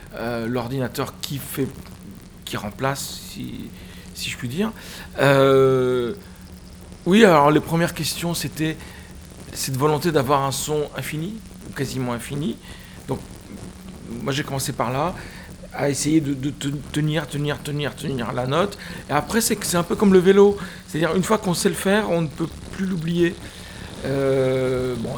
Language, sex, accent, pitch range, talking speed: French, male, French, 125-155 Hz, 155 wpm